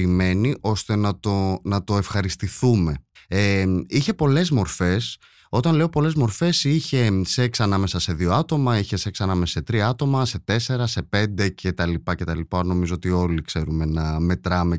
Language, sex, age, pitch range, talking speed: Greek, male, 30-49, 90-140 Hz, 170 wpm